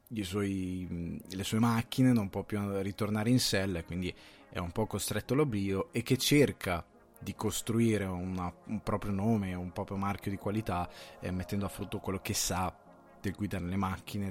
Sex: male